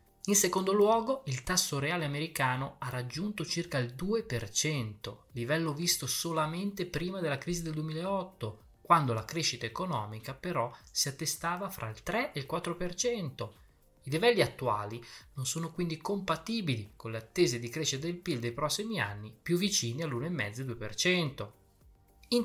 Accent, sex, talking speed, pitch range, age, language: native, male, 145 wpm, 115-170 Hz, 20-39, Italian